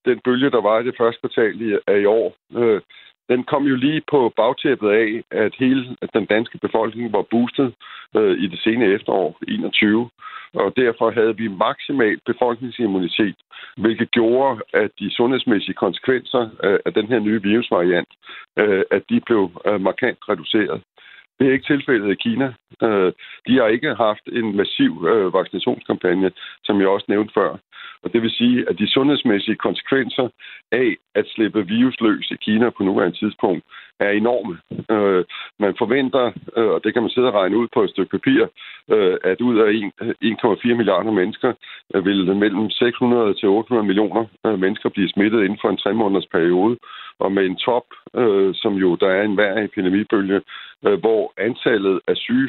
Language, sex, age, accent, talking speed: Danish, male, 60-79, native, 160 wpm